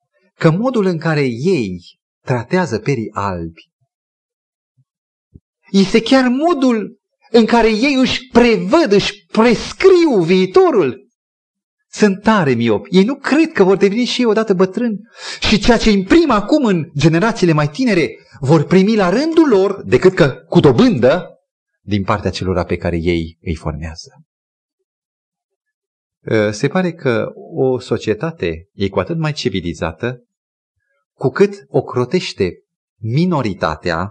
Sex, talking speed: male, 130 wpm